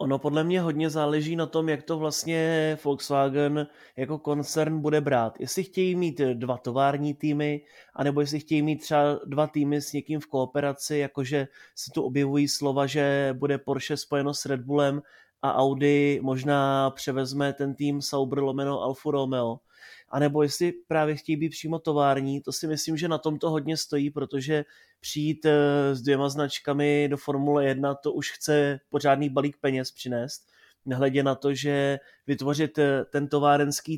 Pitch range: 135-150 Hz